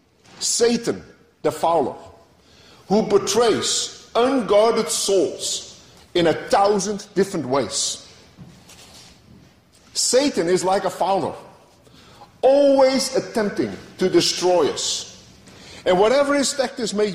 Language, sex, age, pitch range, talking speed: English, male, 50-69, 185-250 Hz, 95 wpm